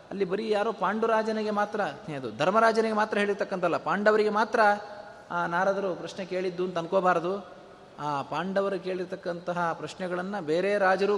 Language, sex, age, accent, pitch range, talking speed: Kannada, male, 30-49, native, 170-205 Hz, 130 wpm